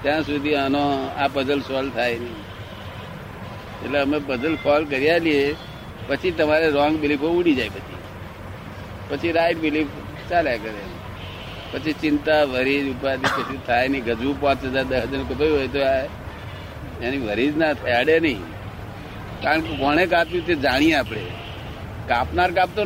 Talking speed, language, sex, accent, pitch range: 125 wpm, Gujarati, male, native, 105-150 Hz